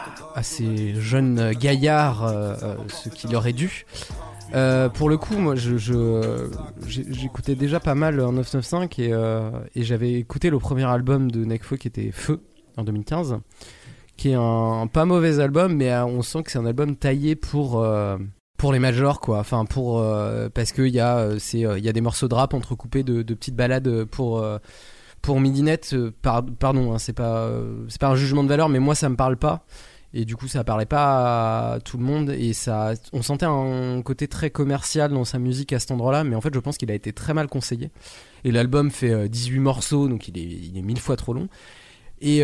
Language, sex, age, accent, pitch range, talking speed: French, male, 20-39, French, 115-140 Hz, 210 wpm